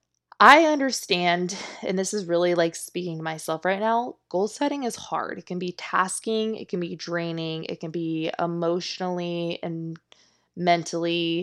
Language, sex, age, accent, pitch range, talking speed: English, female, 20-39, American, 165-200 Hz, 160 wpm